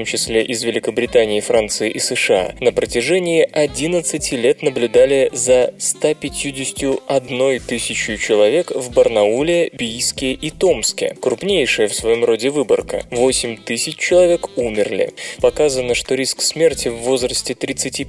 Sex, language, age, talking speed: male, Russian, 20-39, 115 wpm